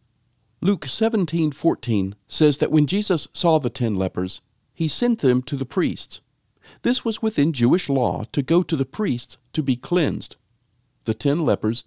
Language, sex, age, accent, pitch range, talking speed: English, male, 50-69, American, 110-155 Hz, 165 wpm